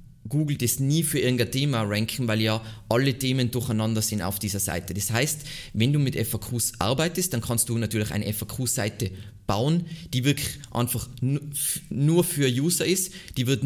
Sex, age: male, 20-39